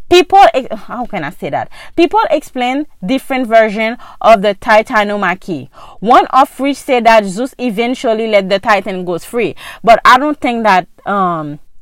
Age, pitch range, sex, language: 30-49, 215-300 Hz, female, English